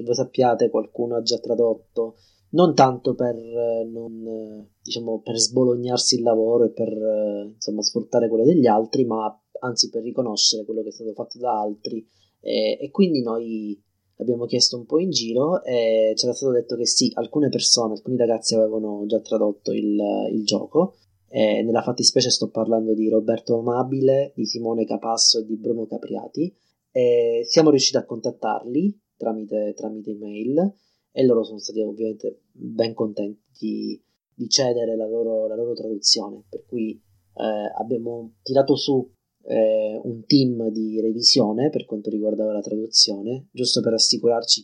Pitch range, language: 110-125 Hz, Italian